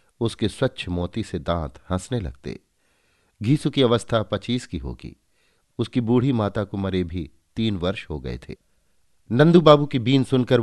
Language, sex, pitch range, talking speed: Hindi, male, 85-120 Hz, 145 wpm